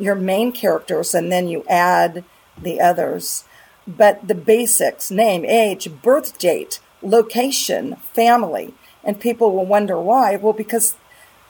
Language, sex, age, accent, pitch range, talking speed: English, female, 50-69, American, 195-245 Hz, 130 wpm